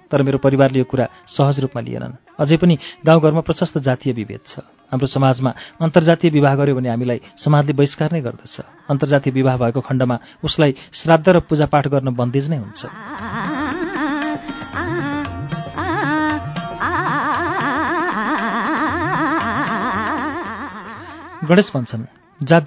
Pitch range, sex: 130-160 Hz, male